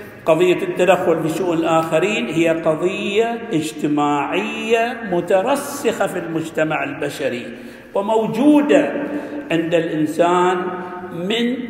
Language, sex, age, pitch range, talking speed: Arabic, male, 50-69, 165-225 Hz, 80 wpm